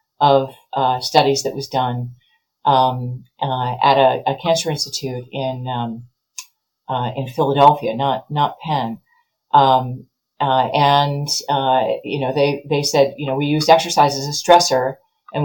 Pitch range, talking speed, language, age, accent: 130-155 Hz, 150 wpm, English, 40-59, American